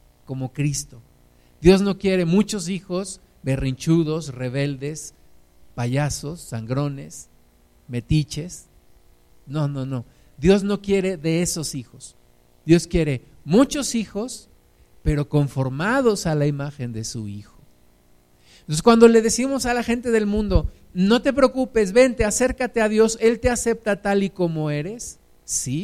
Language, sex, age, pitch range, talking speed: Spanish, male, 50-69, 125-190 Hz, 130 wpm